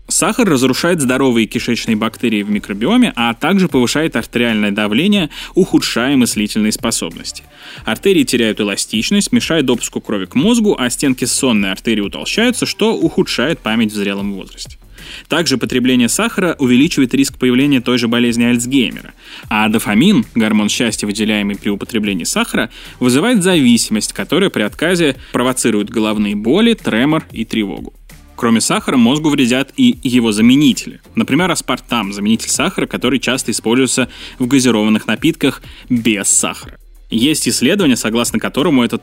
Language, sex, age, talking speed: Russian, male, 20-39, 135 wpm